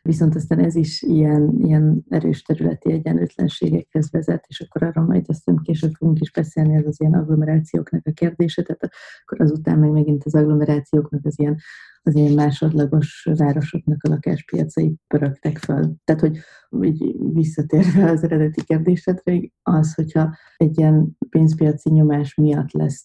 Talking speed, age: 145 wpm, 30-49